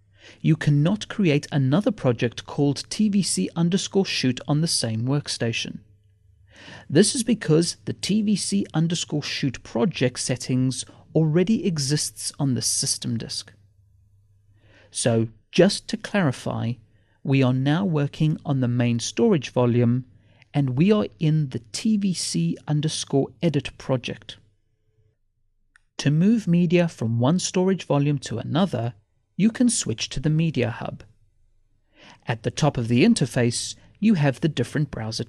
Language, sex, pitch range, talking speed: English, male, 115-160 Hz, 130 wpm